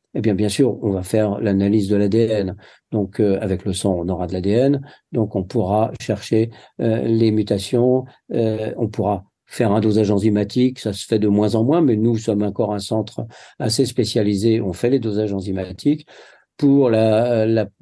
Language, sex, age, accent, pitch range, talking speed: French, male, 50-69, French, 100-115 Hz, 190 wpm